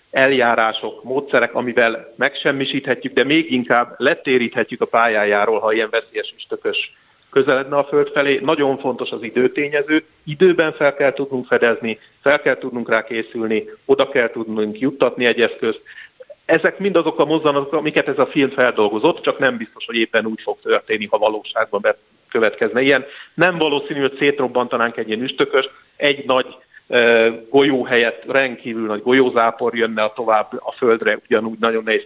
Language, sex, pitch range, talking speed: Hungarian, male, 120-175 Hz, 150 wpm